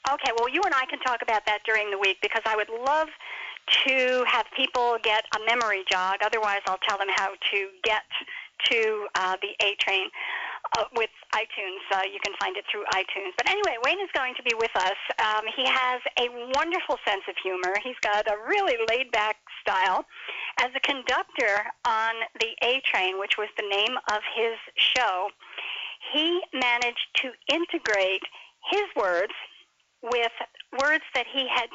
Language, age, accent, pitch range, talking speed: English, 50-69, American, 210-295 Hz, 170 wpm